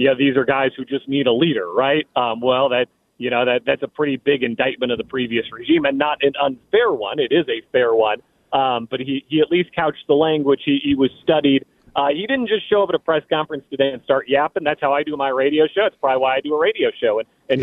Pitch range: 130-155 Hz